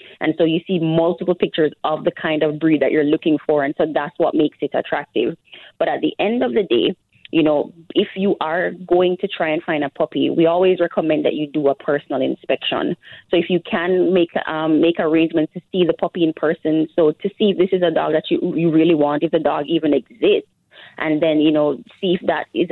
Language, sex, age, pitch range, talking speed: English, female, 20-39, 155-180 Hz, 240 wpm